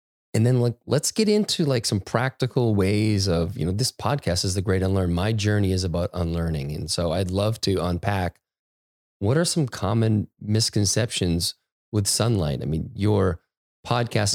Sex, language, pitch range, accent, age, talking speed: male, English, 85-110 Hz, American, 30-49, 170 wpm